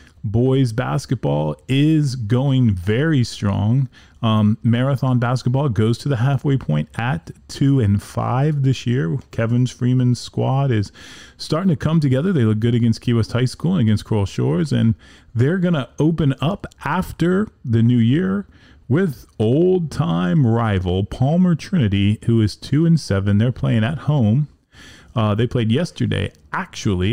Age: 30-49